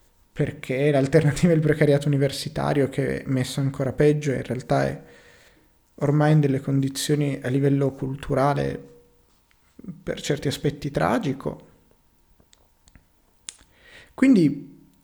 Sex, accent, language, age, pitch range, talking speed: male, native, Italian, 30-49, 105-150 Hz, 110 wpm